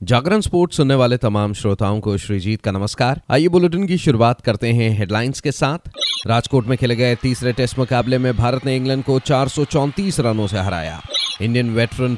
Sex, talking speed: male, 180 wpm